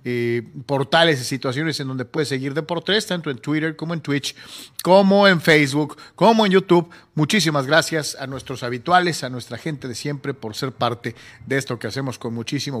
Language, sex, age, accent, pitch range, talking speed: Spanish, male, 40-59, Mexican, 135-190 Hz, 190 wpm